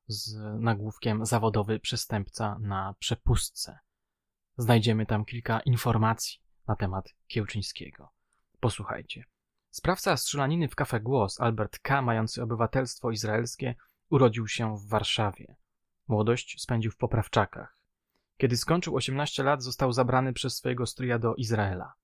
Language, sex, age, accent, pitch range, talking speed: Polish, male, 20-39, native, 110-130 Hz, 115 wpm